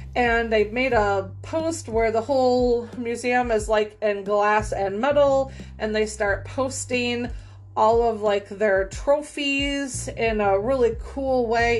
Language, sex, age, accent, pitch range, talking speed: English, female, 30-49, American, 210-295 Hz, 150 wpm